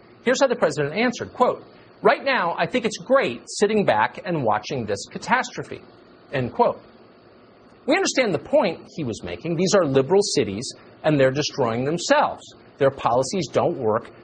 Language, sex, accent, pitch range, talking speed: English, male, American, 145-220 Hz, 165 wpm